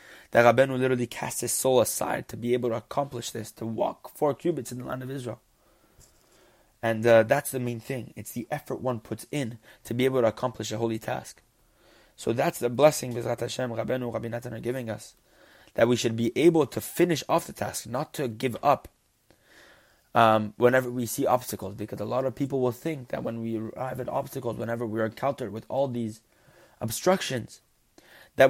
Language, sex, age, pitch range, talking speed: English, male, 20-39, 120-160 Hz, 200 wpm